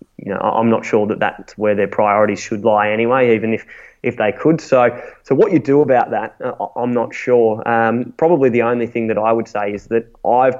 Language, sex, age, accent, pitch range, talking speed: English, male, 20-39, Australian, 105-120 Hz, 225 wpm